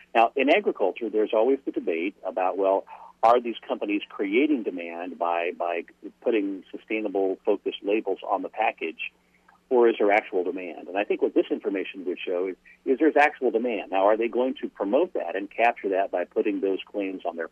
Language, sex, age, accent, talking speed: English, male, 50-69, American, 195 wpm